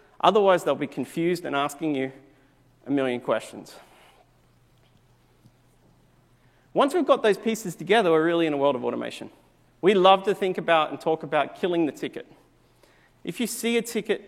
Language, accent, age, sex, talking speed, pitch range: English, Australian, 40-59, male, 165 wpm, 145-190 Hz